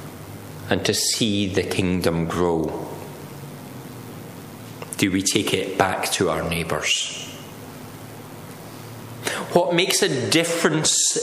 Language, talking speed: English, 95 wpm